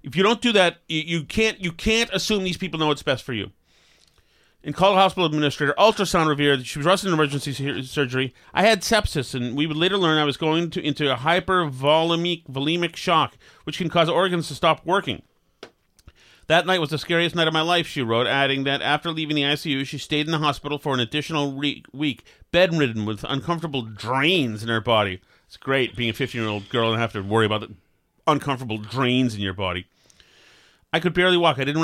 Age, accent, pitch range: 30-49, American, 125-160 Hz